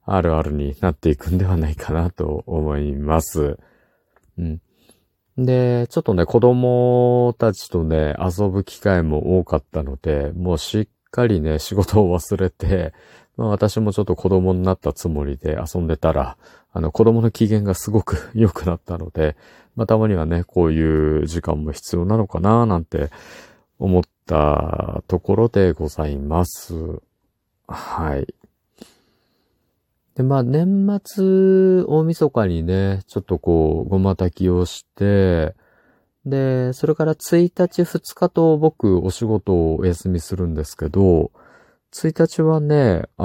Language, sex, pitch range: Japanese, male, 80-115 Hz